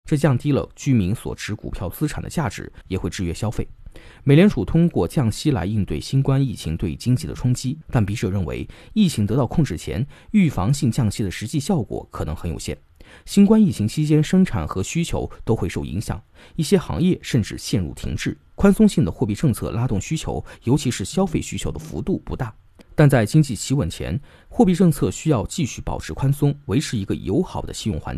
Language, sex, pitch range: Chinese, male, 100-150 Hz